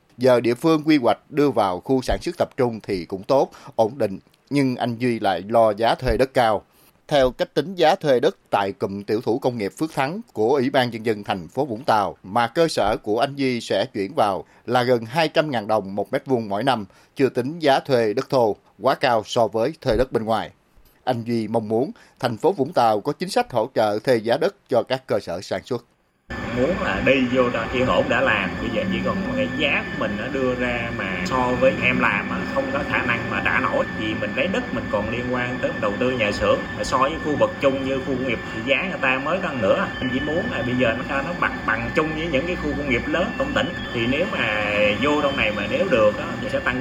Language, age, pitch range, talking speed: Vietnamese, 30-49, 115-140 Hz, 255 wpm